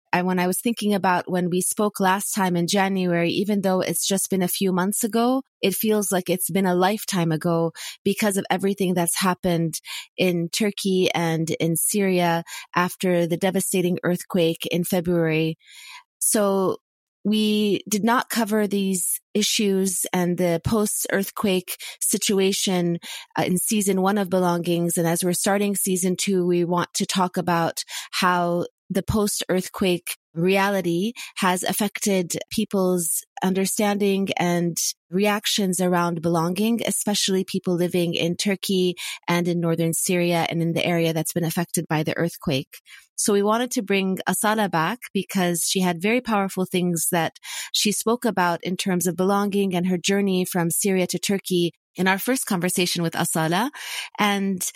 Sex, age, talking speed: female, 30-49, 150 wpm